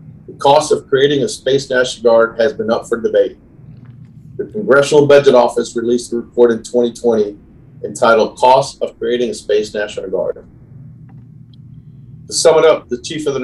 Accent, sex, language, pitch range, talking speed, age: American, male, English, 120-150 Hz, 165 wpm, 40-59